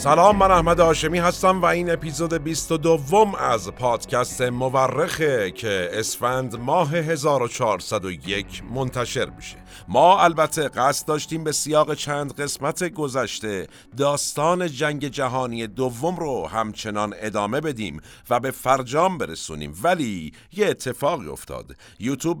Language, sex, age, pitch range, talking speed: Persian, male, 50-69, 105-145 Hz, 125 wpm